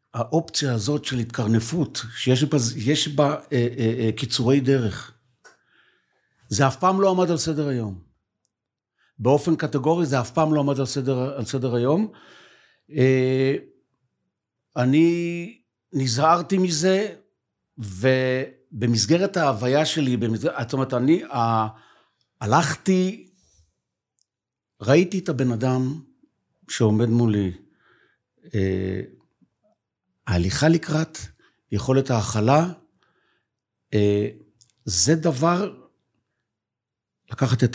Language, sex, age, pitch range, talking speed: Hebrew, male, 60-79, 120-160 Hz, 95 wpm